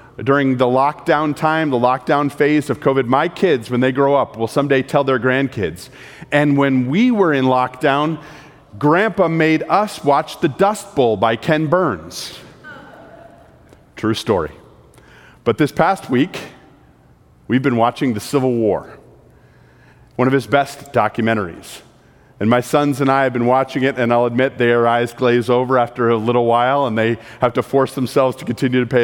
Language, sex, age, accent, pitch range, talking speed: English, male, 40-59, American, 120-140 Hz, 170 wpm